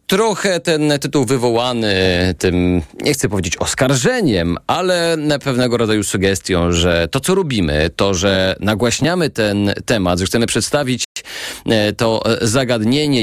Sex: male